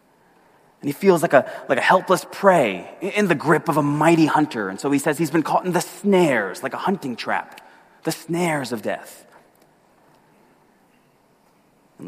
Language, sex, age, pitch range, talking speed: English, male, 20-39, 150-225 Hz, 175 wpm